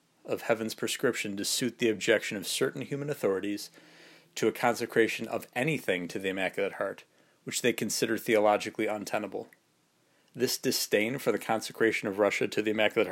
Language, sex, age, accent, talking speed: English, male, 40-59, American, 160 wpm